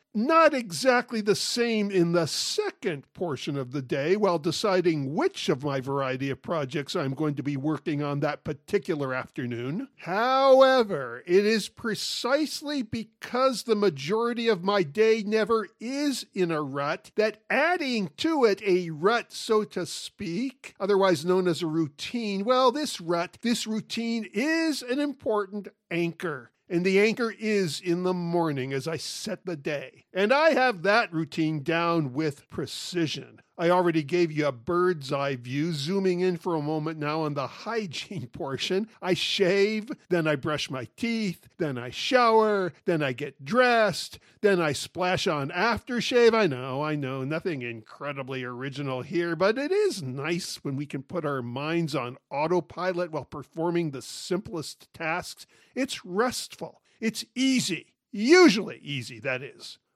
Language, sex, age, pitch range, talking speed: English, male, 50-69, 150-225 Hz, 155 wpm